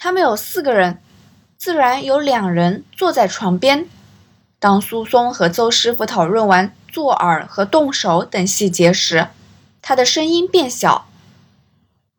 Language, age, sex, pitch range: Chinese, 20-39, female, 185-270 Hz